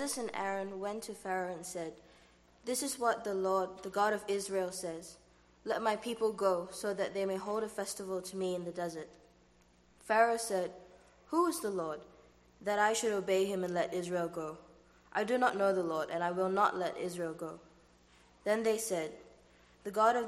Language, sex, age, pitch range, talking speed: English, female, 20-39, 170-205 Hz, 200 wpm